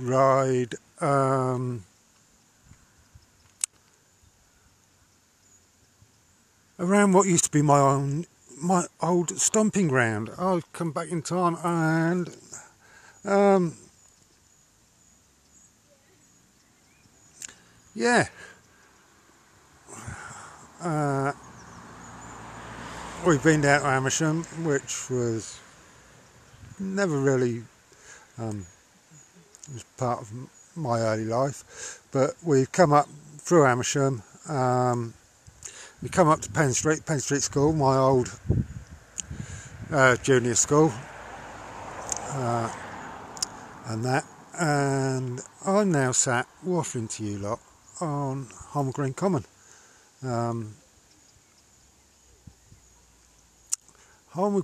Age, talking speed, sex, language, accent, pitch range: 50-69, 85 wpm, male, English, British, 110-155 Hz